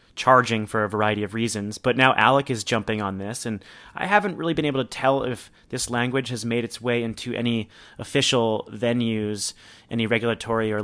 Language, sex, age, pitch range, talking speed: English, male, 30-49, 110-130 Hz, 195 wpm